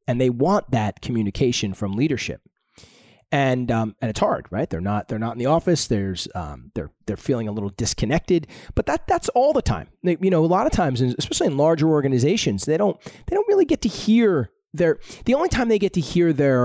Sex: male